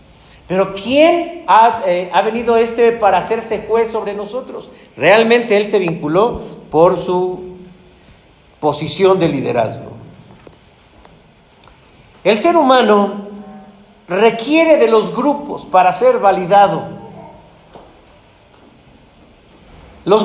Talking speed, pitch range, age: 90 wpm, 185-255 Hz, 50-69